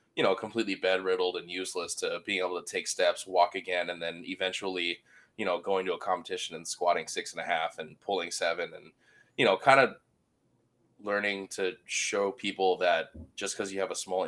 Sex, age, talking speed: male, 20-39, 205 wpm